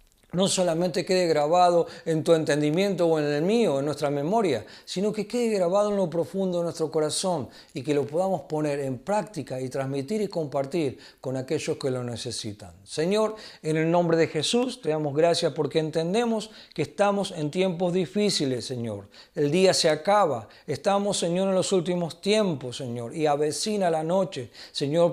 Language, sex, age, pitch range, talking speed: Spanish, male, 40-59, 145-190 Hz, 175 wpm